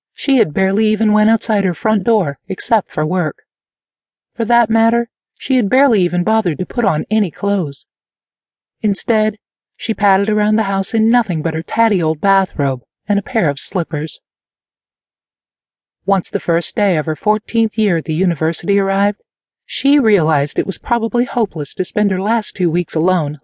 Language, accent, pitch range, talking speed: English, American, 170-220 Hz, 175 wpm